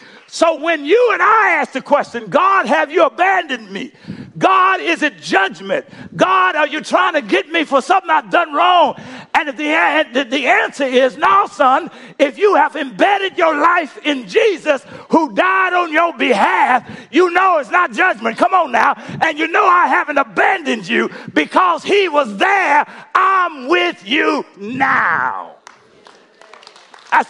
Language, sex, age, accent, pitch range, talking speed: English, male, 50-69, American, 215-355 Hz, 165 wpm